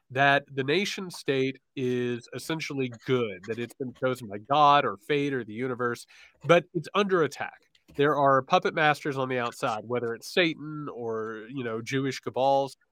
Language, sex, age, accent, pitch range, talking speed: English, male, 30-49, American, 125-160 Hz, 170 wpm